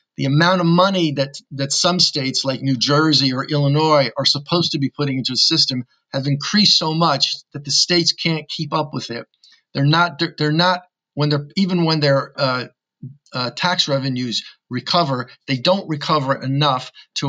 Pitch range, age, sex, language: 130-155 Hz, 50-69, male, English